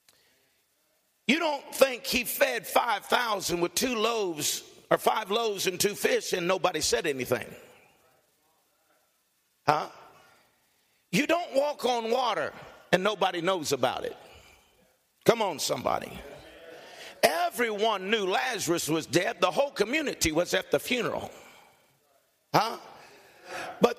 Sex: male